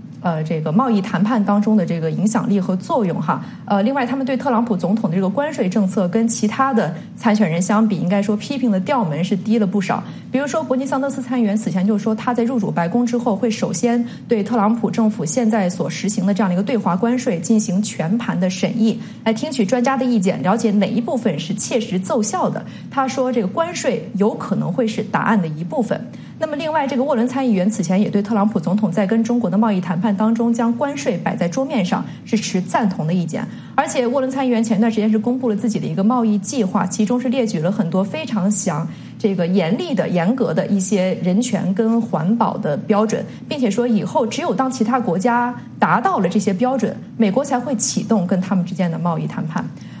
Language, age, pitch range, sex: English, 30-49, 195-240 Hz, female